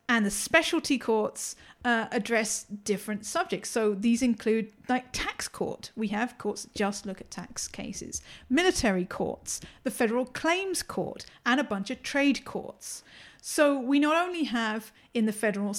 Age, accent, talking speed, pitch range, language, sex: 40-59, British, 165 wpm, 205-265 Hz, English, female